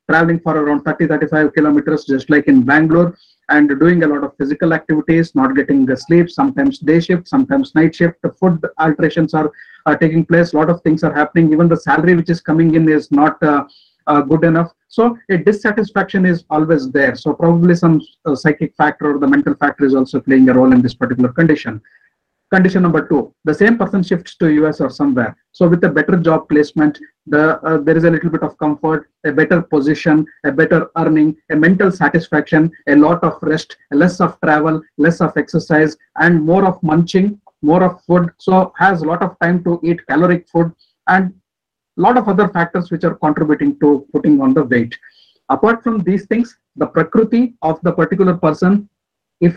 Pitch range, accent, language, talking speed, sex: 150-180 Hz, Indian, English, 195 wpm, male